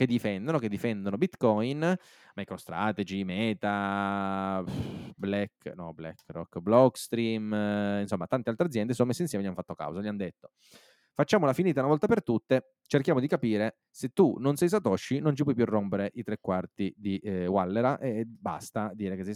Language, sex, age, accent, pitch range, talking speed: Italian, male, 20-39, native, 100-155 Hz, 165 wpm